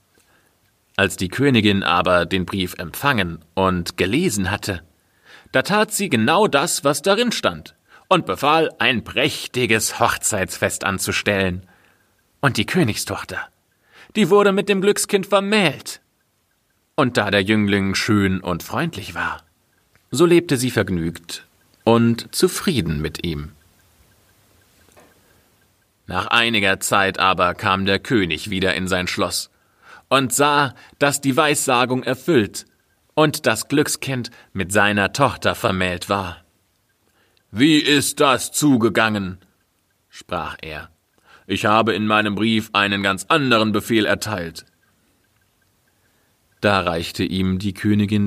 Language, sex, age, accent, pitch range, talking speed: German, male, 40-59, German, 95-120 Hz, 120 wpm